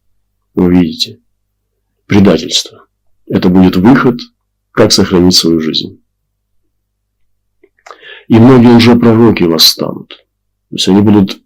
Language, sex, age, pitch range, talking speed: Russian, male, 40-59, 95-105 Hz, 100 wpm